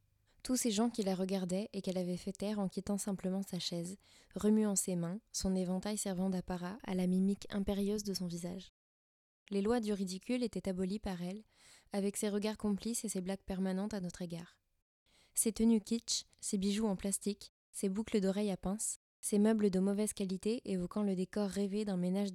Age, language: 20-39, French